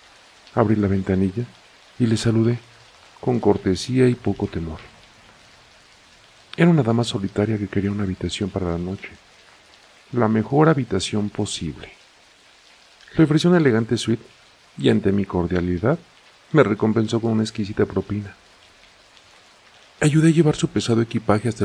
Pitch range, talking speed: 105-125 Hz, 135 wpm